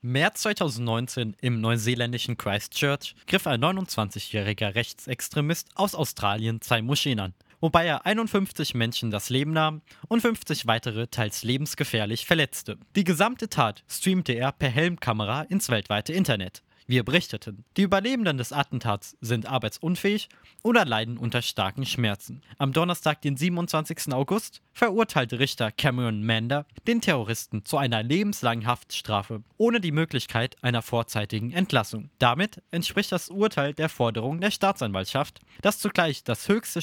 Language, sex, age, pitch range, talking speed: German, male, 20-39, 115-175 Hz, 135 wpm